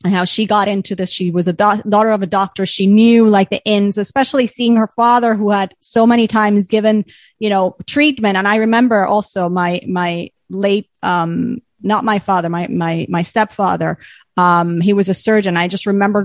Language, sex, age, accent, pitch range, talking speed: English, female, 30-49, American, 195-260 Hz, 205 wpm